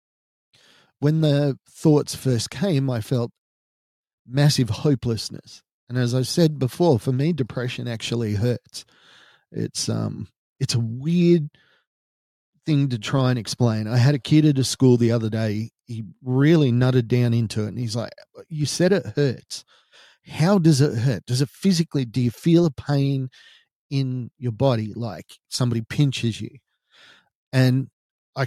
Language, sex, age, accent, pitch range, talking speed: English, male, 40-59, Australian, 115-145 Hz, 155 wpm